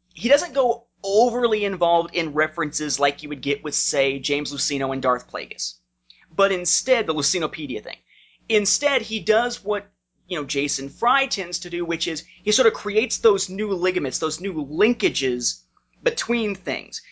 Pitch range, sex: 140-205 Hz, male